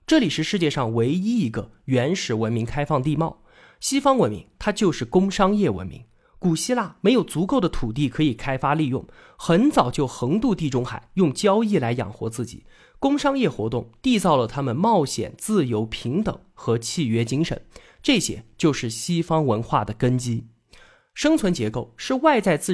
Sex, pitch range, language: male, 120-200 Hz, Chinese